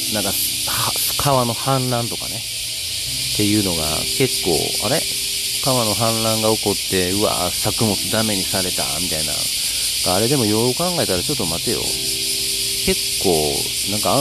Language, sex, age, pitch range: Japanese, male, 40-59, 85-120 Hz